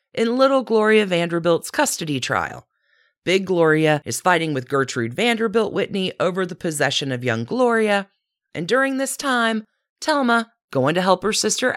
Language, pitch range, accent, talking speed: English, 130-220 Hz, American, 155 wpm